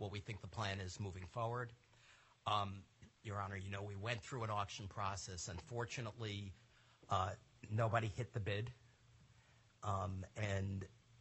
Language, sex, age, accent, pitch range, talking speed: English, male, 50-69, American, 100-120 Hz, 145 wpm